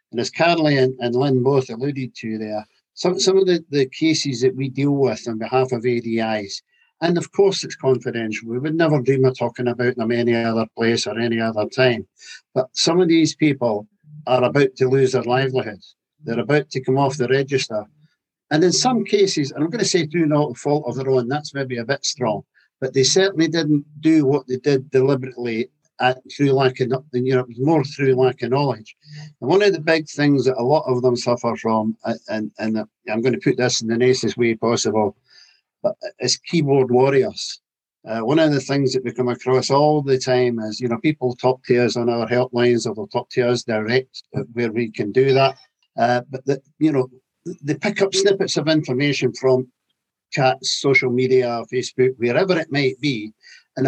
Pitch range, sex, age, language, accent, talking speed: 125-150 Hz, male, 50-69, English, British, 200 wpm